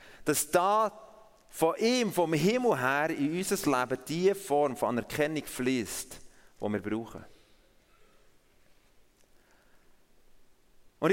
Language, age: German, 40-59